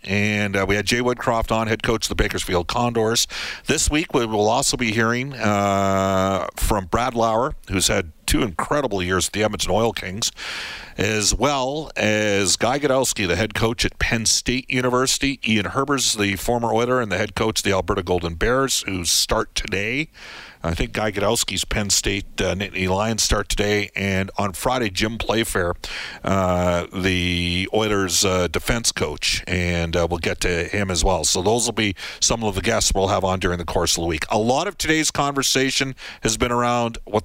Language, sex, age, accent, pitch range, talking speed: English, male, 50-69, American, 95-115 Hz, 190 wpm